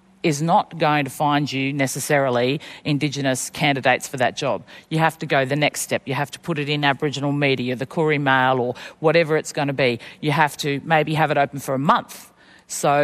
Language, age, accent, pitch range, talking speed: English, 40-59, Australian, 140-165 Hz, 215 wpm